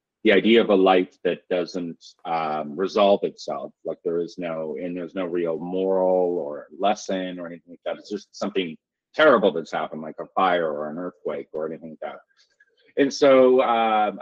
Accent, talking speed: American, 185 wpm